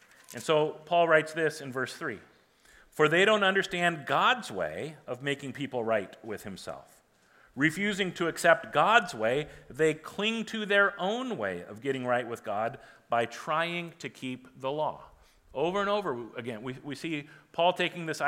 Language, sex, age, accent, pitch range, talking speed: English, male, 40-59, American, 140-180 Hz, 170 wpm